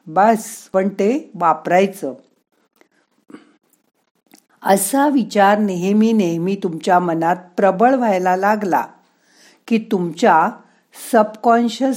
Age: 50-69